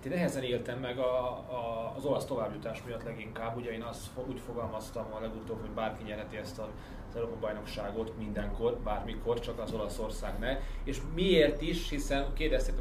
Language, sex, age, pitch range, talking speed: Hungarian, male, 30-49, 110-125 Hz, 170 wpm